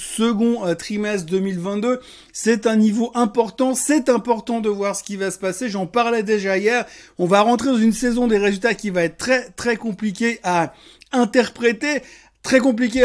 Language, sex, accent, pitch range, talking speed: French, male, French, 195-240 Hz, 175 wpm